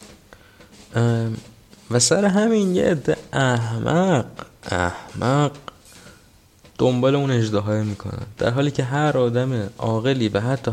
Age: 20-39